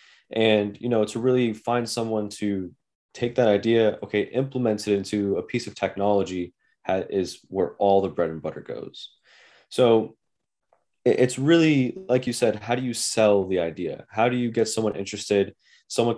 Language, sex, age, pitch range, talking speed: English, male, 20-39, 100-120 Hz, 170 wpm